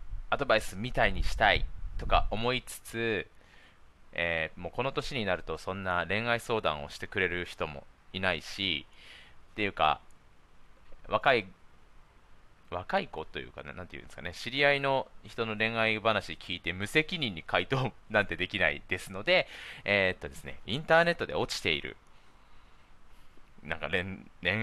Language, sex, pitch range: Japanese, male, 85-125 Hz